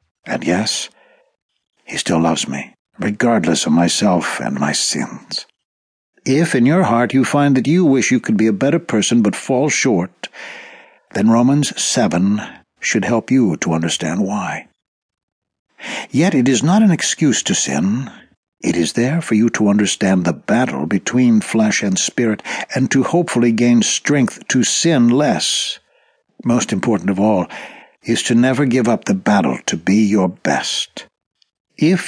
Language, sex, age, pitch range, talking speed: English, male, 60-79, 105-135 Hz, 155 wpm